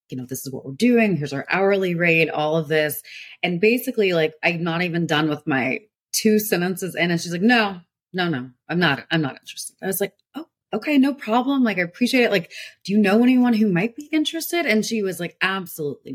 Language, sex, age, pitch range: English, female, 30-49, 160-230 Hz